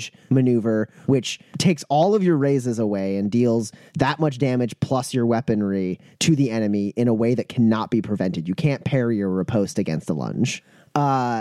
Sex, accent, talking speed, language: male, American, 185 wpm, English